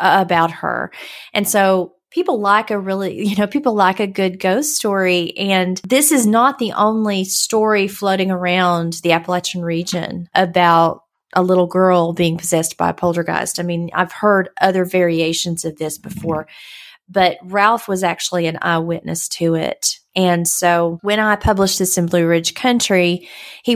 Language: English